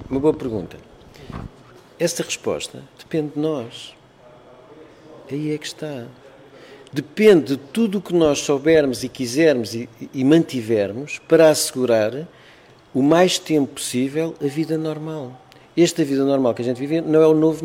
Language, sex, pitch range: Portuguese, male, 125-165 Hz